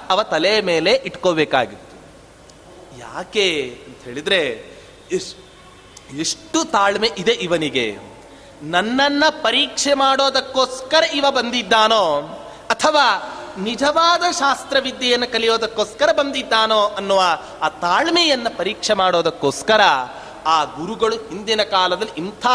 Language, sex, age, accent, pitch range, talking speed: Kannada, male, 30-49, native, 205-305 Hz, 55 wpm